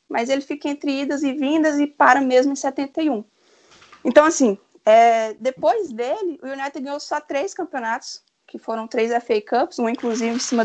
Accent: Brazilian